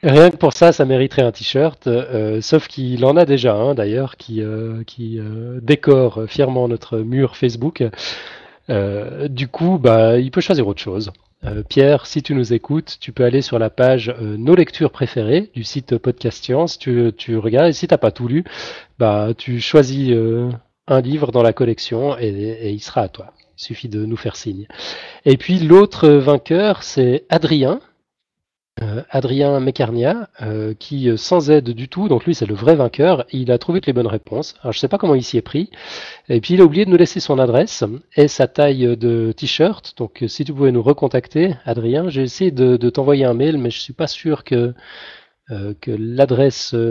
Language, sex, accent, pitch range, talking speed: French, male, French, 115-150 Hz, 205 wpm